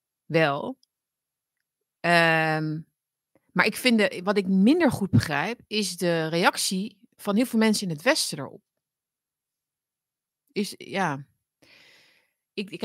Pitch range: 160-210 Hz